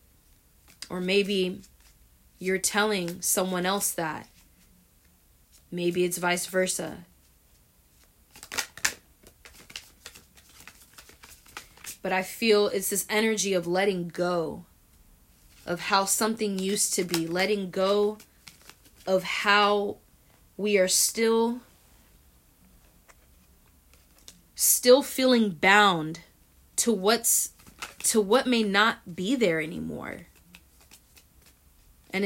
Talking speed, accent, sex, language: 85 wpm, American, female, English